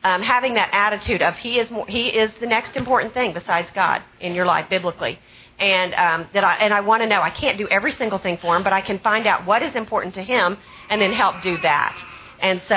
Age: 40-59